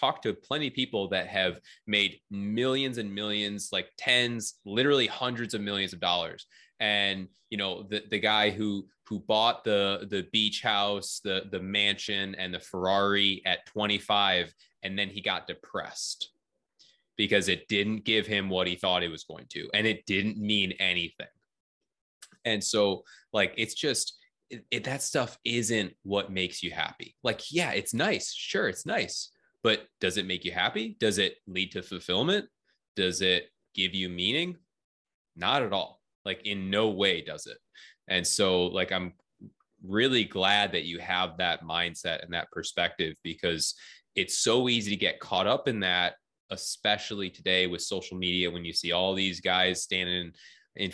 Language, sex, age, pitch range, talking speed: English, male, 20-39, 95-105 Hz, 170 wpm